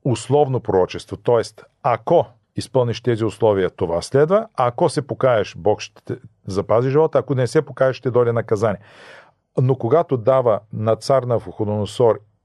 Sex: male